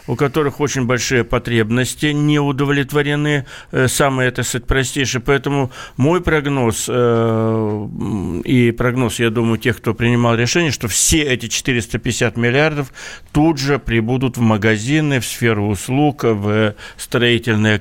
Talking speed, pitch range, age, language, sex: 120 wpm, 115-140 Hz, 60-79, Russian, male